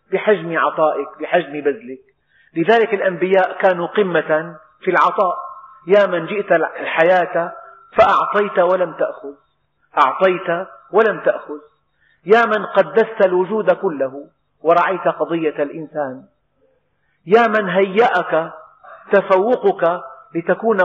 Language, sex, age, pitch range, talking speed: Arabic, male, 50-69, 155-210 Hz, 95 wpm